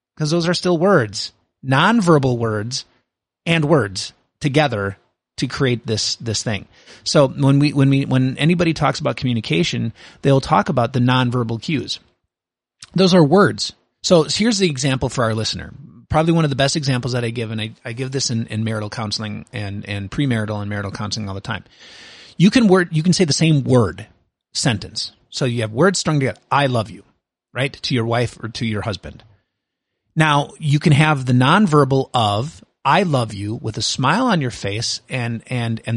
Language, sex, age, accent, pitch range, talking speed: English, male, 30-49, American, 110-145 Hz, 190 wpm